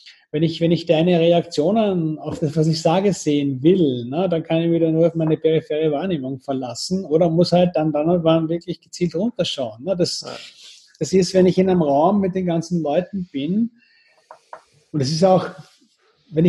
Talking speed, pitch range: 195 wpm, 155-180 Hz